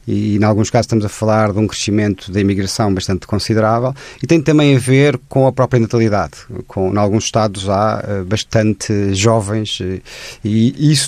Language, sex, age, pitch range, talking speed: Portuguese, male, 30-49, 115-150 Hz, 175 wpm